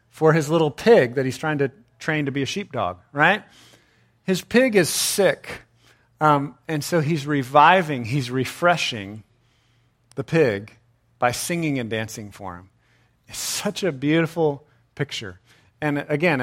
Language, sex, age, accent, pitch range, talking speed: English, male, 40-59, American, 120-165 Hz, 145 wpm